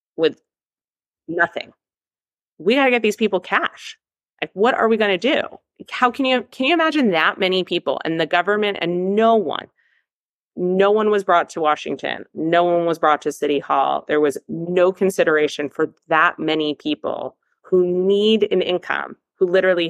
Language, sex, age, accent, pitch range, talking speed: English, female, 30-49, American, 140-175 Hz, 170 wpm